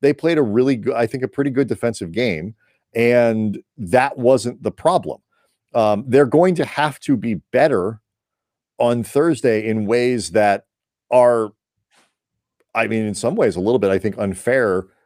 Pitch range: 105-125 Hz